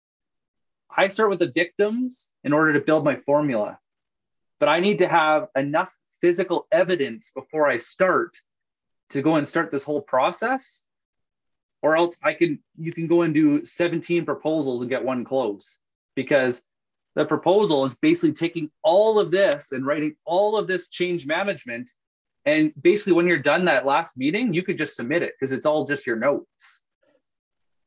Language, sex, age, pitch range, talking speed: English, male, 20-39, 150-205 Hz, 170 wpm